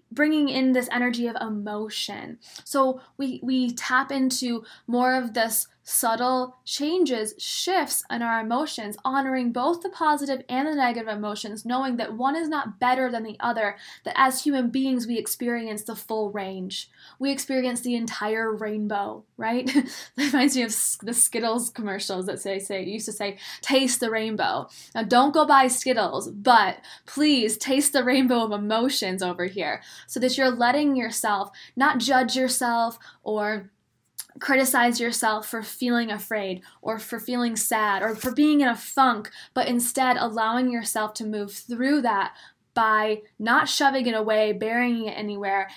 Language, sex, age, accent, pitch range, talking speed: English, female, 10-29, American, 215-260 Hz, 160 wpm